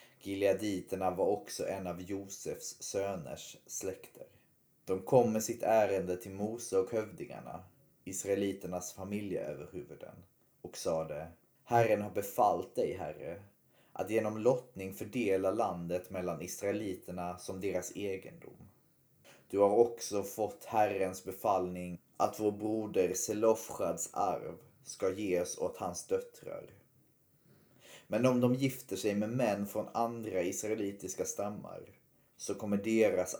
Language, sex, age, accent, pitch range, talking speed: Swedish, male, 30-49, native, 95-110 Hz, 120 wpm